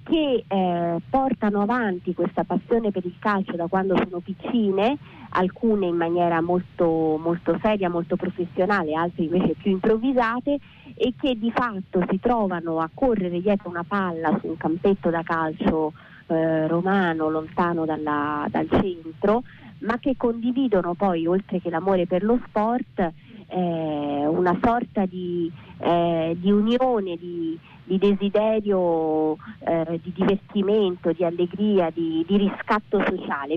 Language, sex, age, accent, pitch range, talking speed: Italian, female, 30-49, native, 170-220 Hz, 130 wpm